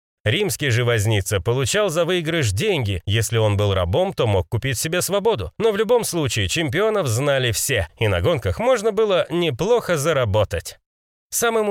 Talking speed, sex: 155 wpm, male